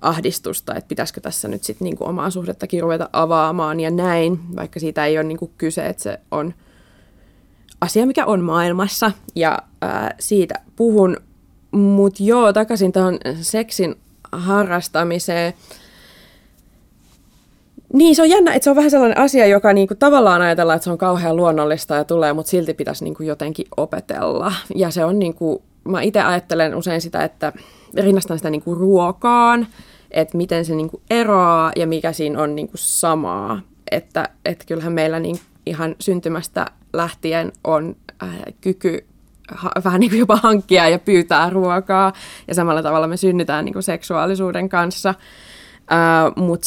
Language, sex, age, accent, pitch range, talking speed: Finnish, female, 20-39, native, 165-200 Hz, 145 wpm